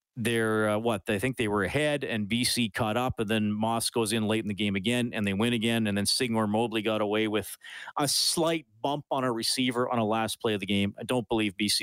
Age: 40-59